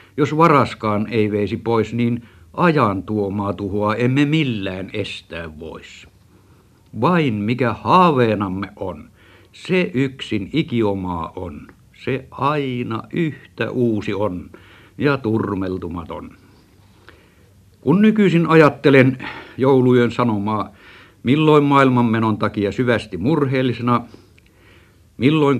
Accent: native